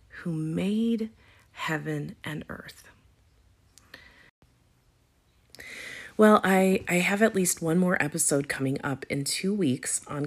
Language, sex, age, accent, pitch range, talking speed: English, female, 40-59, American, 155-200 Hz, 115 wpm